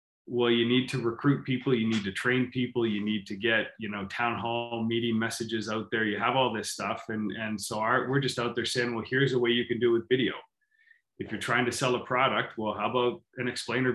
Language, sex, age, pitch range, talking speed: English, male, 20-39, 110-125 Hz, 255 wpm